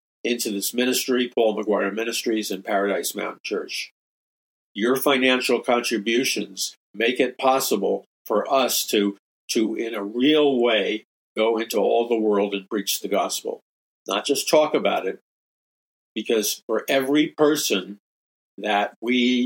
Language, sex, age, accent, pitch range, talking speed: English, male, 50-69, American, 105-125 Hz, 135 wpm